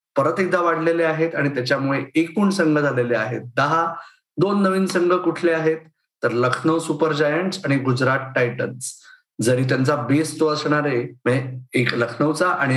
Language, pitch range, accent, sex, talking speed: Marathi, 140-175 Hz, native, male, 145 wpm